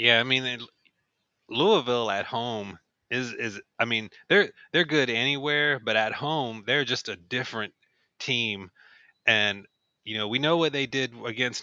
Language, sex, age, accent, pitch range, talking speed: English, male, 30-49, American, 105-120 Hz, 155 wpm